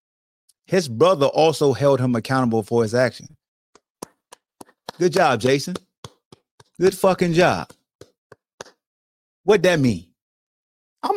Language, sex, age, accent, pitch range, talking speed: English, male, 30-49, American, 130-185 Hz, 105 wpm